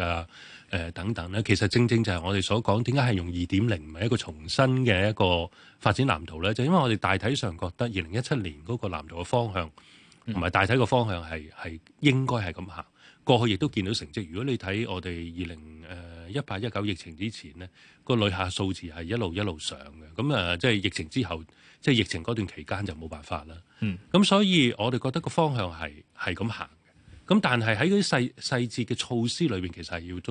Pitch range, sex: 85-115 Hz, male